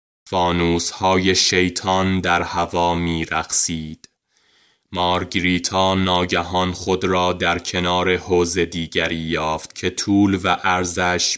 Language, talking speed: Persian, 105 wpm